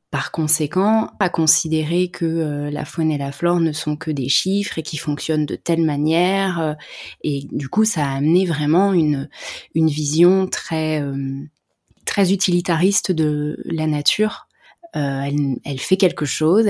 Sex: female